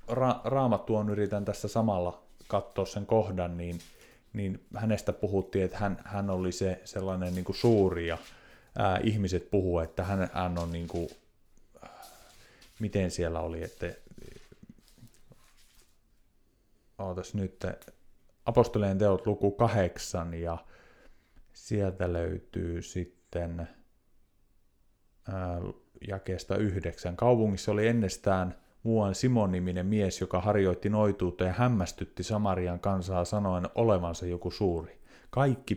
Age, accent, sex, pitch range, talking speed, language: 30-49, native, male, 90-105 Hz, 110 wpm, Finnish